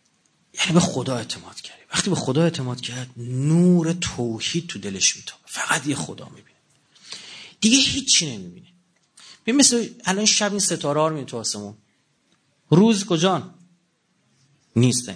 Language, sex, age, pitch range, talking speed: Persian, male, 30-49, 135-195 Hz, 130 wpm